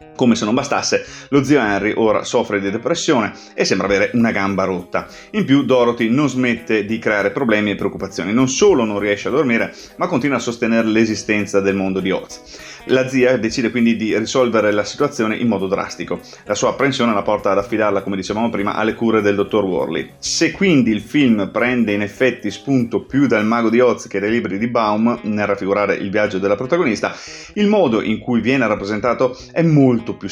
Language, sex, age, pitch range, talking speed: Italian, male, 30-49, 105-130 Hz, 200 wpm